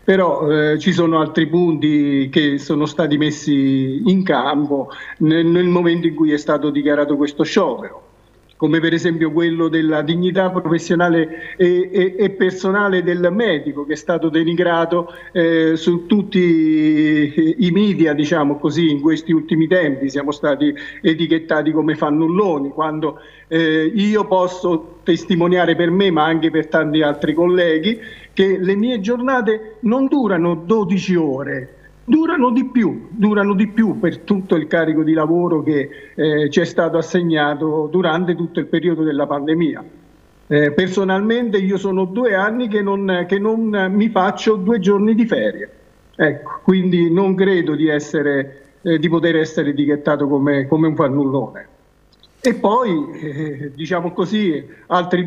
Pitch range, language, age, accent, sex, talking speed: 155-190 Hz, Italian, 50-69, native, male, 150 wpm